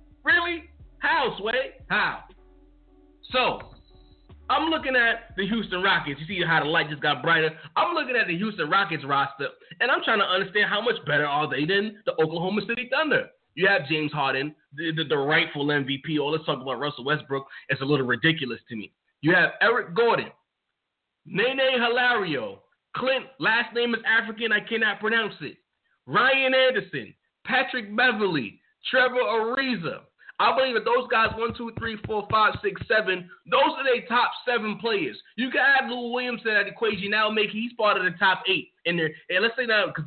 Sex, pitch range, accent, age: male, 160-235 Hz, American, 20-39